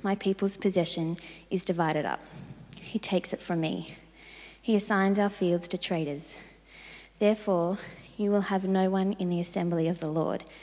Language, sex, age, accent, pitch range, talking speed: English, female, 20-39, Australian, 170-205 Hz, 165 wpm